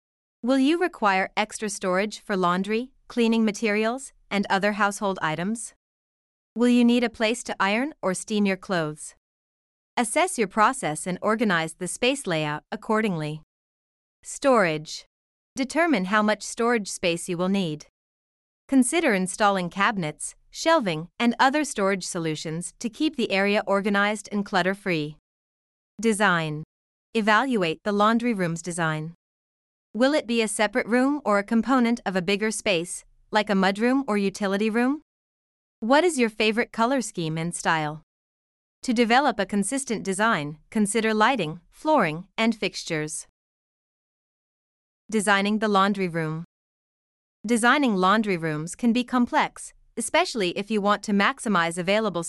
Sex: female